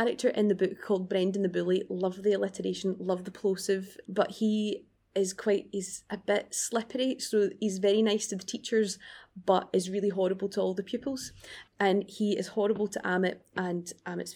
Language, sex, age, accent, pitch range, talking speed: English, female, 20-39, British, 185-210 Hz, 190 wpm